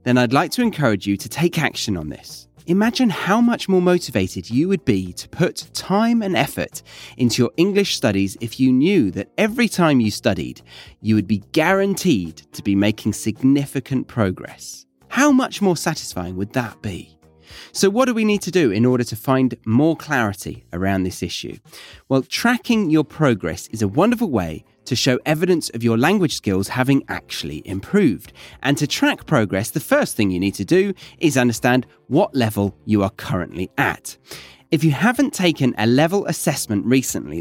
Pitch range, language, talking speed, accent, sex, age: 105-160 Hz, English, 180 wpm, British, male, 30-49